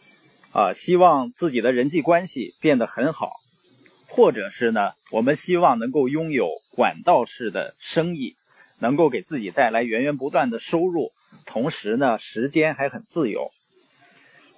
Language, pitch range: Chinese, 145-220 Hz